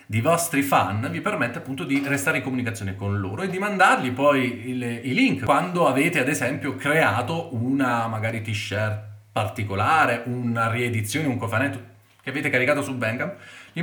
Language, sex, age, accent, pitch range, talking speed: Italian, male, 30-49, native, 105-140 Hz, 160 wpm